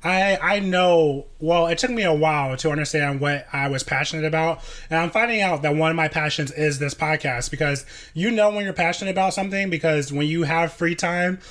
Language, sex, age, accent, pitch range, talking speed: English, male, 20-39, American, 145-170 Hz, 220 wpm